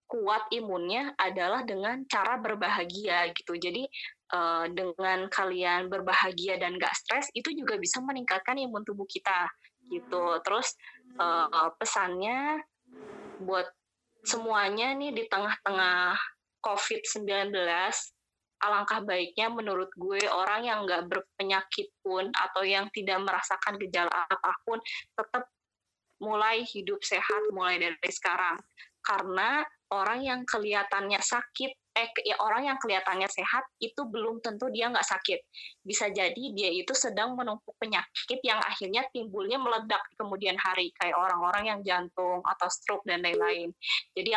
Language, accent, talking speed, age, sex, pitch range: Indonesian, native, 125 wpm, 20-39, female, 185-230 Hz